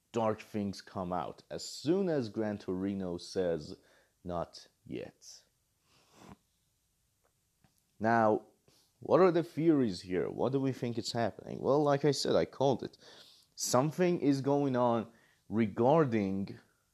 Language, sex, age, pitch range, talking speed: English, male, 30-49, 100-135 Hz, 130 wpm